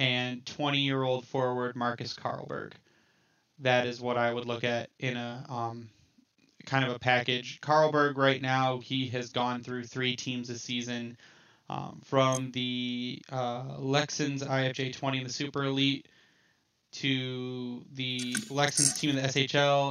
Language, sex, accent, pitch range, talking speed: English, male, American, 125-140 Hz, 140 wpm